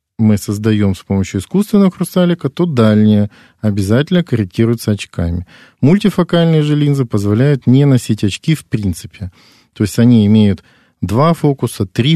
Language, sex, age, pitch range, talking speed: Russian, male, 40-59, 105-135 Hz, 135 wpm